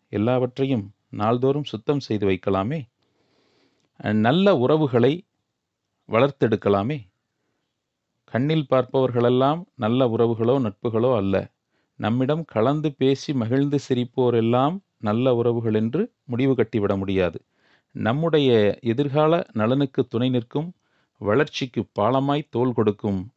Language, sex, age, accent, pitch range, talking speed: Tamil, male, 40-59, native, 105-140 Hz, 85 wpm